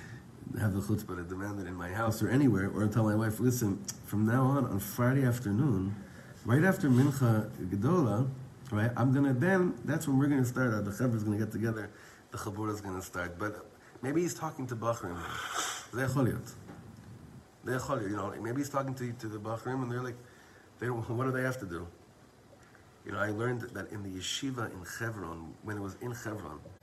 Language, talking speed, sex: English, 195 wpm, male